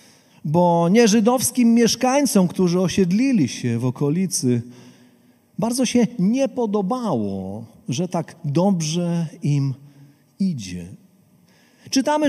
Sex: male